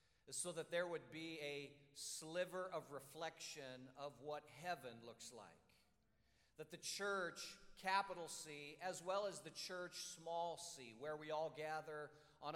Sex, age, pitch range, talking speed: male, 50-69, 150-180 Hz, 150 wpm